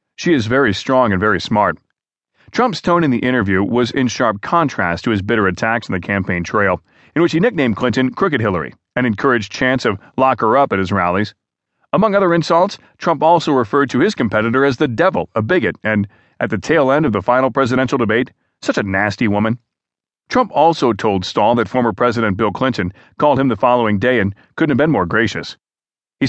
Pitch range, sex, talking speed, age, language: 105-140 Hz, male, 205 wpm, 40-59, English